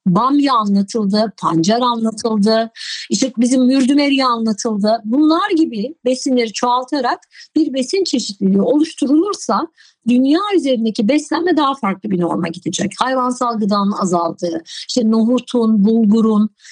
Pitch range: 215-295 Hz